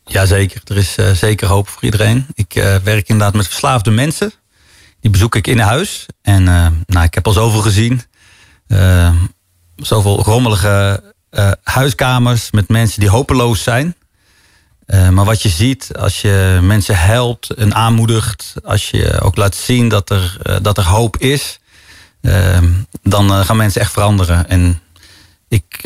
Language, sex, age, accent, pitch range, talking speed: Dutch, male, 40-59, Dutch, 95-115 Hz, 160 wpm